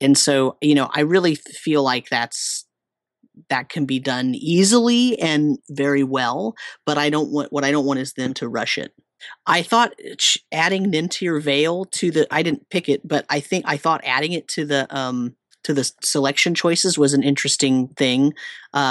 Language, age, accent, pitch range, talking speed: English, 30-49, American, 140-175 Hz, 190 wpm